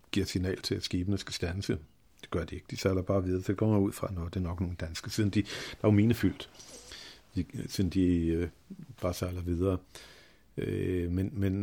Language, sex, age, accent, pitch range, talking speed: Danish, male, 50-69, native, 90-105 Hz, 220 wpm